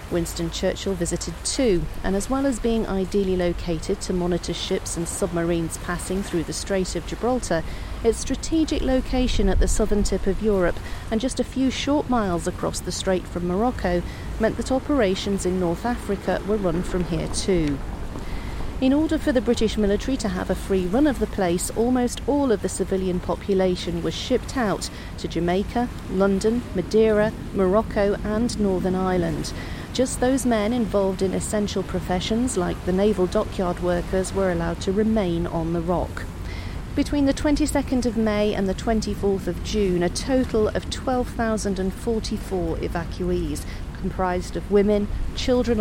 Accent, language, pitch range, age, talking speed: British, English, 180-230 Hz, 40-59, 160 wpm